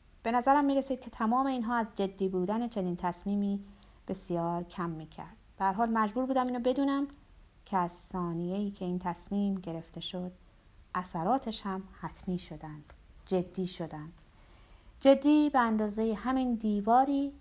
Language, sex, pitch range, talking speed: Persian, female, 175-235 Hz, 130 wpm